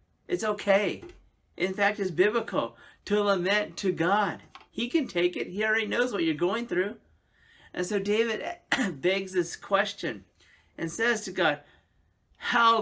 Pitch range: 155-200 Hz